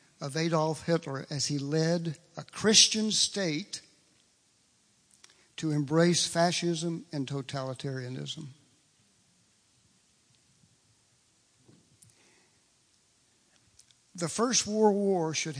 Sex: male